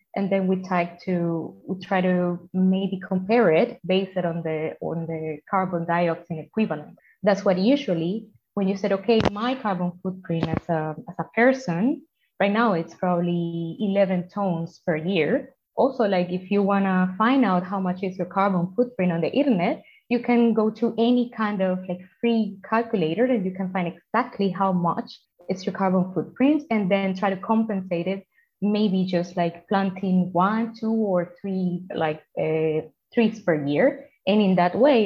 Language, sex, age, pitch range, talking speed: English, female, 20-39, 175-220 Hz, 175 wpm